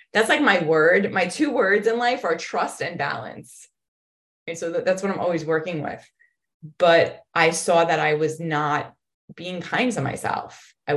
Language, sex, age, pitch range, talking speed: English, female, 20-39, 145-190 Hz, 180 wpm